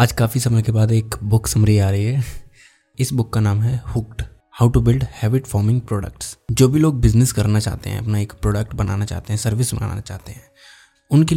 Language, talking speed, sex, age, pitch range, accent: Hindi, 215 wpm, male, 20-39, 110-130 Hz, native